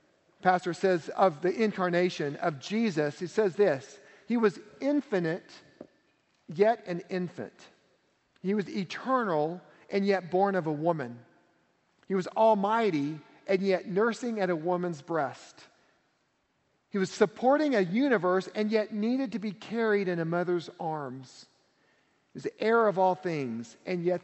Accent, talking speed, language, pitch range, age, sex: American, 145 wpm, English, 170-220 Hz, 40-59, male